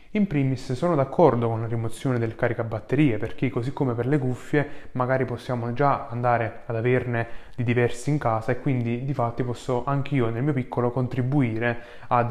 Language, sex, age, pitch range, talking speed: Italian, male, 20-39, 115-135 Hz, 175 wpm